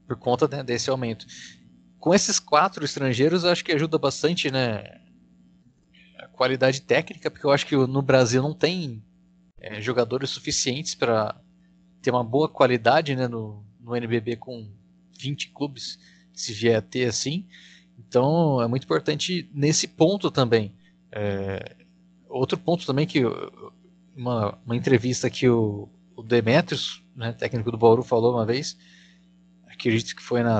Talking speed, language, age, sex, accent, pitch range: 145 wpm, Portuguese, 20-39, male, Brazilian, 115-155 Hz